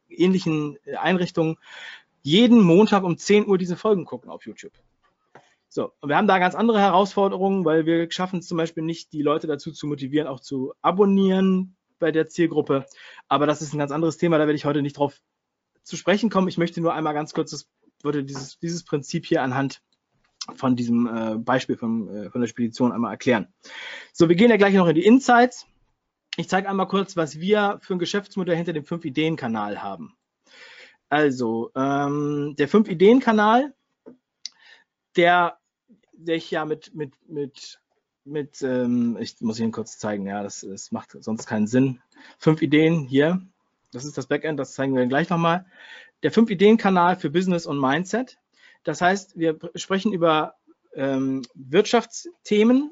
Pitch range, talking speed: 135-185 Hz, 165 wpm